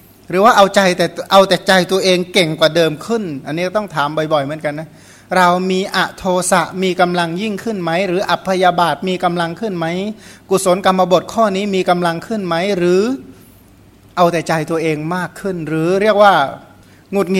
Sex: male